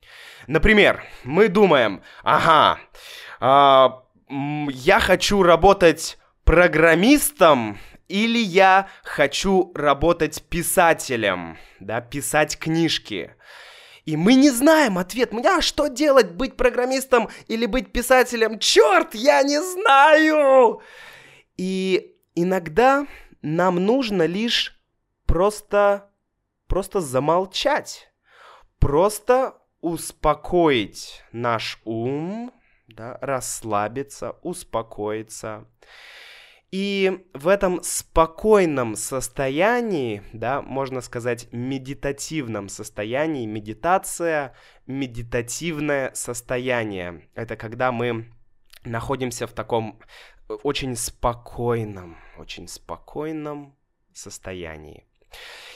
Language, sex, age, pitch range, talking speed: Russian, male, 20-39, 125-205 Hz, 80 wpm